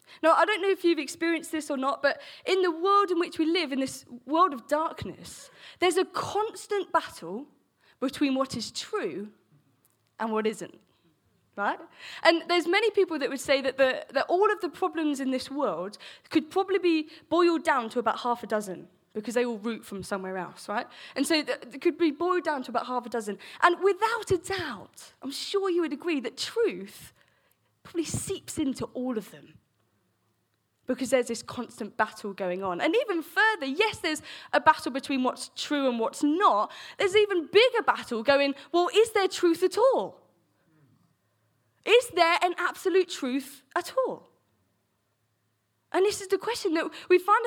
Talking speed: 185 wpm